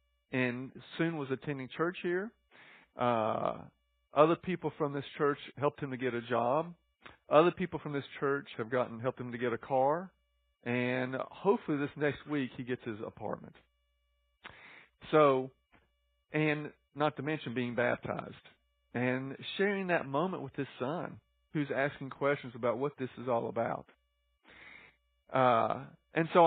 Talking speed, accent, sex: 150 wpm, American, male